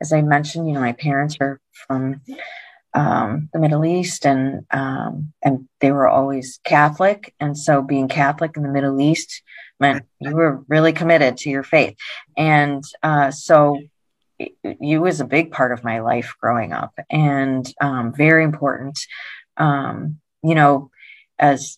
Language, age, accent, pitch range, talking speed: English, 30-49, American, 135-155 Hz, 155 wpm